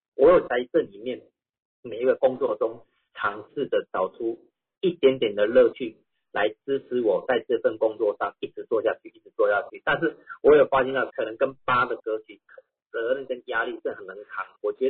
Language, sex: Chinese, male